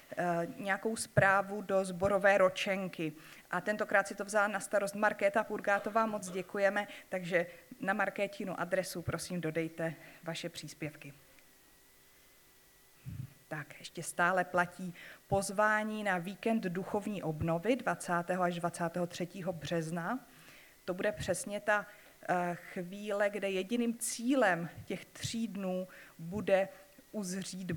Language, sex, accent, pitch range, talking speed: Czech, female, native, 165-210 Hz, 110 wpm